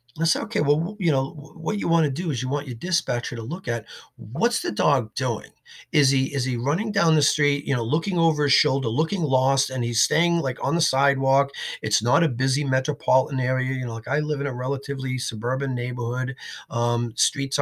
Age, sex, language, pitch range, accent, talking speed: 40-59, male, English, 120-150 Hz, American, 220 wpm